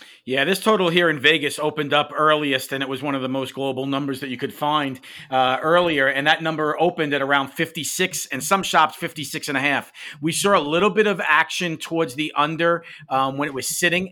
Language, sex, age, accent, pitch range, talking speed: English, male, 50-69, American, 150-175 Hz, 225 wpm